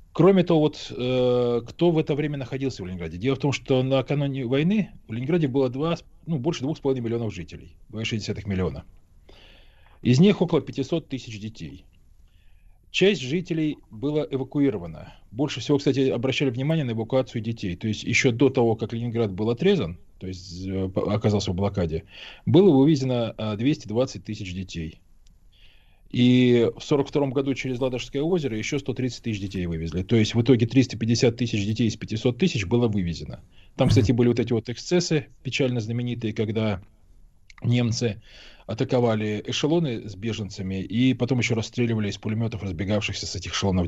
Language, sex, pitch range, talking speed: Russian, male, 95-135 Hz, 155 wpm